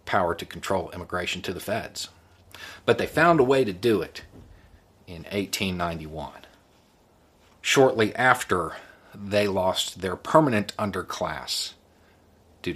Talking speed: 120 wpm